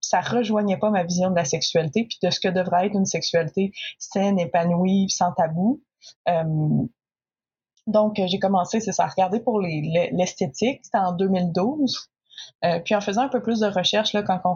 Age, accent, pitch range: 20-39, Canadian, 175-210 Hz